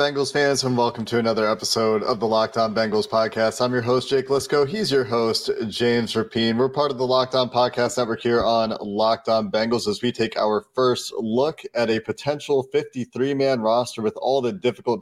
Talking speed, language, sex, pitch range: 195 wpm, English, male, 110-130 Hz